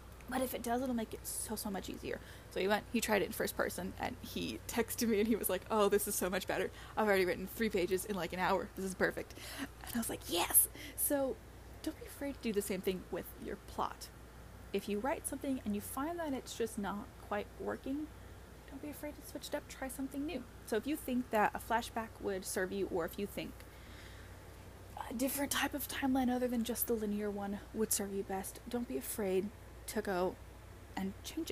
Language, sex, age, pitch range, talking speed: English, female, 20-39, 190-255 Hz, 230 wpm